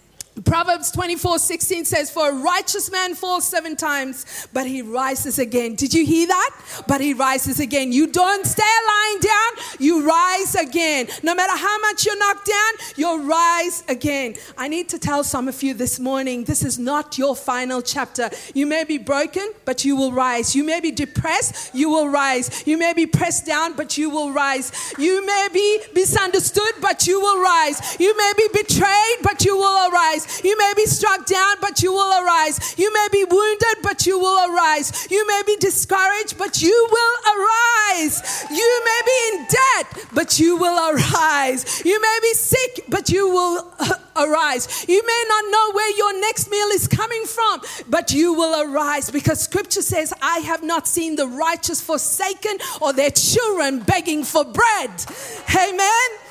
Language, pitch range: English, 300-405 Hz